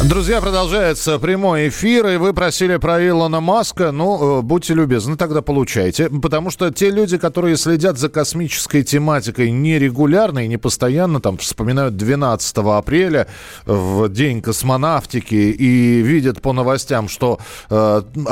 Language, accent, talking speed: Russian, native, 135 wpm